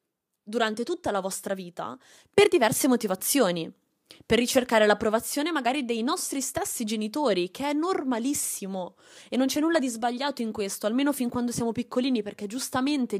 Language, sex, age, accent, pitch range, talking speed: Italian, female, 20-39, native, 195-260 Hz, 155 wpm